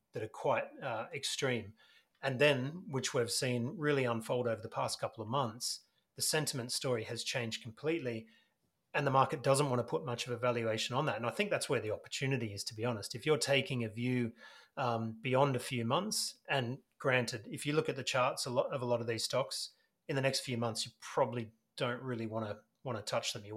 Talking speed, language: 230 wpm, English